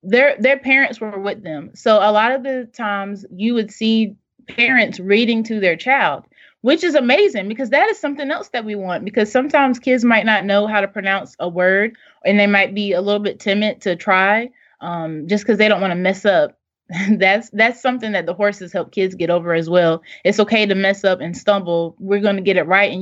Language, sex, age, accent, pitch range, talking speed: English, female, 20-39, American, 195-235 Hz, 225 wpm